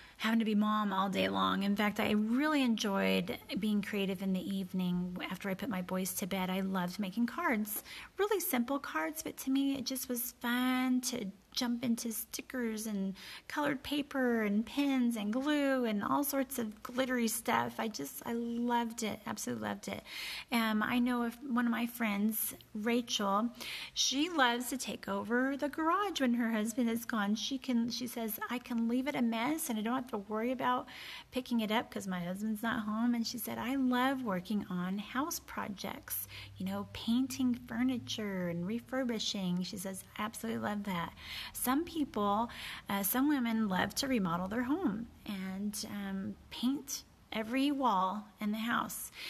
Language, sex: English, female